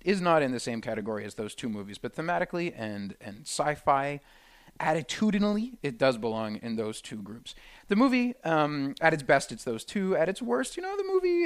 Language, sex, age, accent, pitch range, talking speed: English, male, 30-49, American, 115-160 Hz, 205 wpm